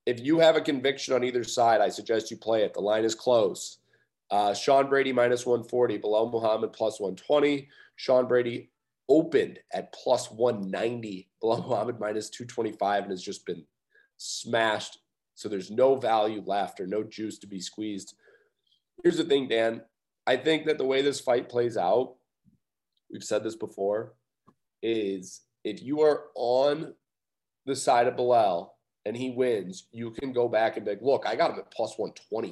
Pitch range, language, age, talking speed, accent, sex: 110-145 Hz, English, 30-49, 175 wpm, American, male